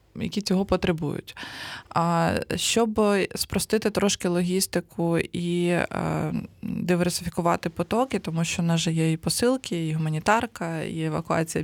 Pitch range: 170-195 Hz